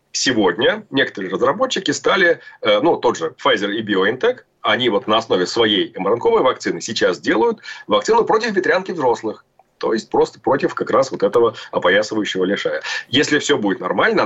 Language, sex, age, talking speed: Russian, male, 30-49, 155 wpm